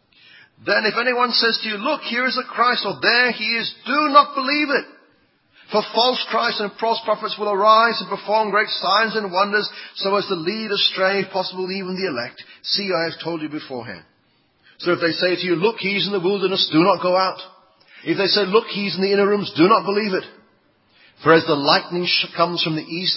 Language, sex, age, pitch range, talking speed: English, male, 40-59, 165-230 Hz, 225 wpm